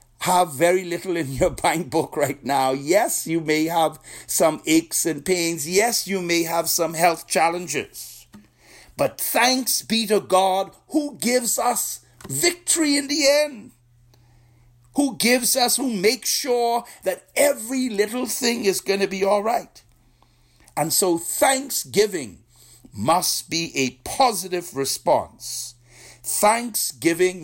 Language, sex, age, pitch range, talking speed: English, male, 60-79, 130-200 Hz, 135 wpm